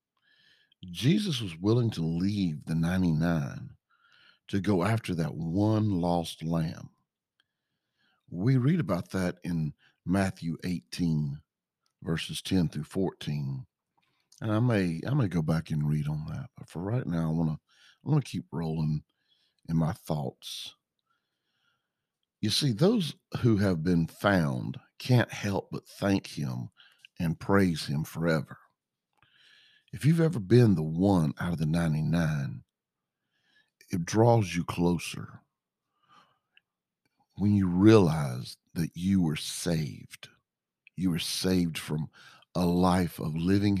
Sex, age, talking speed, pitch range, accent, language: male, 50-69, 130 wpm, 80-105 Hz, American, English